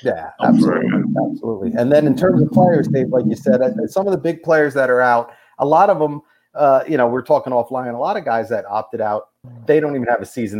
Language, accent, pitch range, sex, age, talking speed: English, American, 100-125 Hz, male, 40-59, 250 wpm